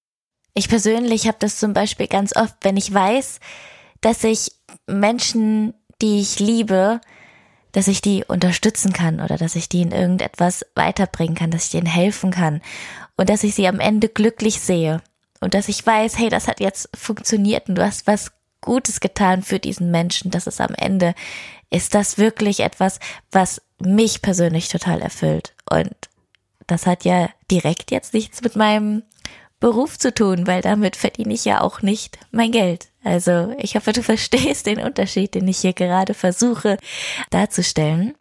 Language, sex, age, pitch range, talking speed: German, female, 20-39, 180-220 Hz, 170 wpm